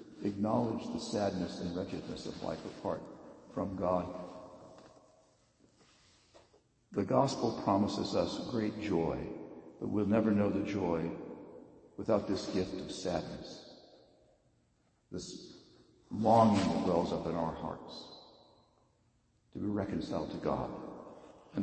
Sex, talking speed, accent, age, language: male, 115 wpm, American, 60-79, English